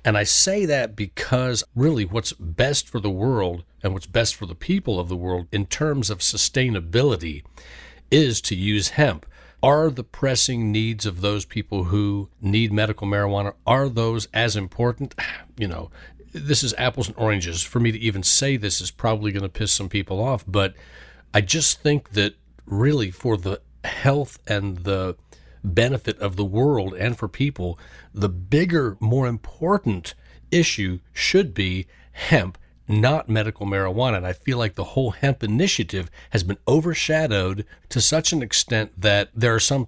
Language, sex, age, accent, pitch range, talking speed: English, male, 40-59, American, 100-130 Hz, 170 wpm